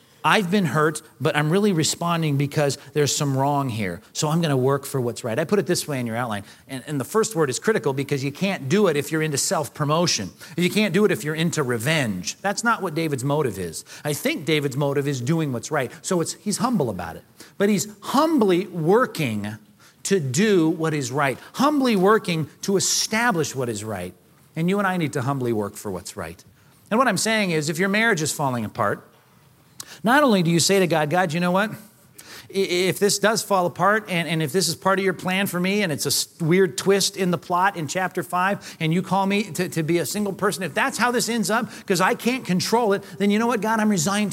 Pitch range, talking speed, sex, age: 140-195 Hz, 240 wpm, male, 40-59